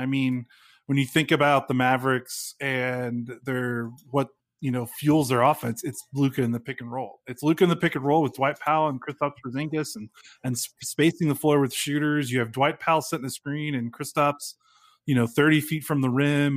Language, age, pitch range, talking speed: English, 20-39, 125-145 Hz, 215 wpm